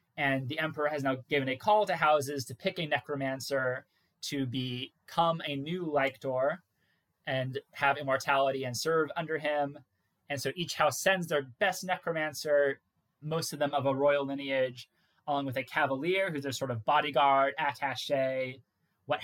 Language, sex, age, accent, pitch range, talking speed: English, male, 20-39, American, 135-160 Hz, 160 wpm